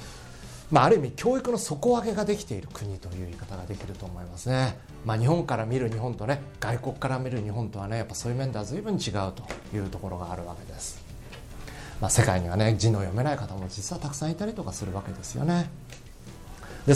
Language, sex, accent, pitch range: Japanese, male, native, 100-155 Hz